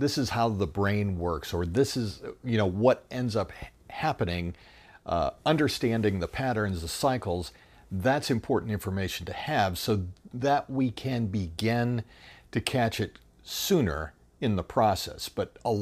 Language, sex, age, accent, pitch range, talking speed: English, male, 50-69, American, 85-125 Hz, 150 wpm